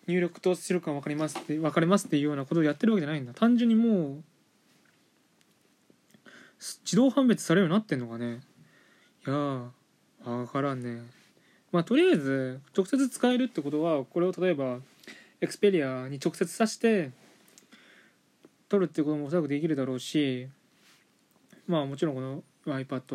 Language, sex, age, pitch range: Japanese, male, 20-39, 140-205 Hz